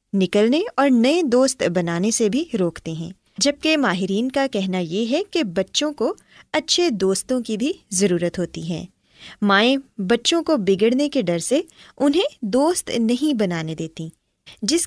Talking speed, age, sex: 155 wpm, 20-39, female